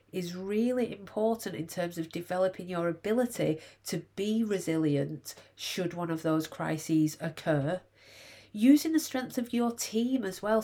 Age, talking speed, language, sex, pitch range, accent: 40-59, 145 wpm, English, female, 160-220 Hz, British